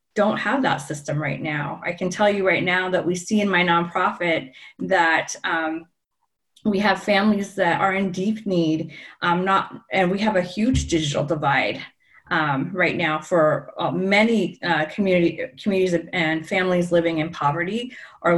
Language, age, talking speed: English, 30-49, 165 wpm